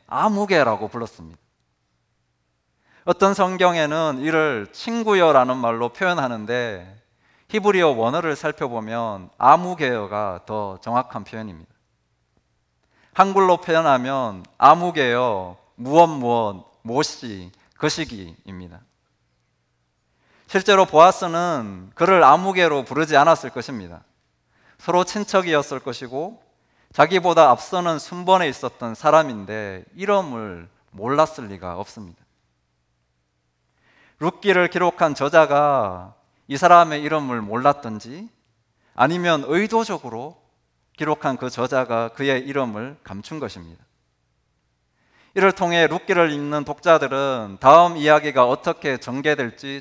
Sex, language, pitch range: male, Korean, 95-160 Hz